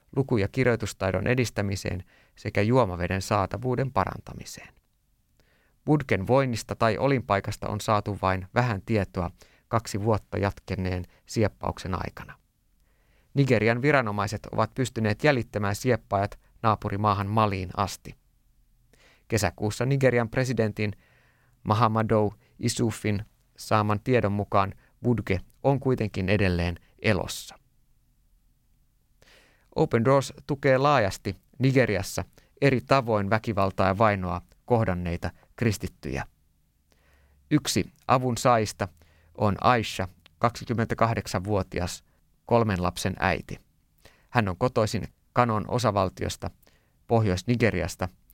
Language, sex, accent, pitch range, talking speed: Finnish, male, native, 95-120 Hz, 90 wpm